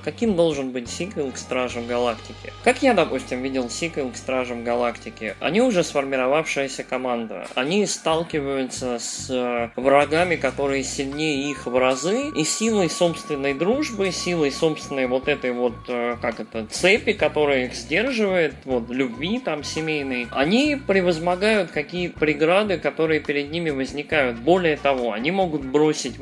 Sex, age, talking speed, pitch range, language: male, 20-39, 135 wpm, 135-190 Hz, Russian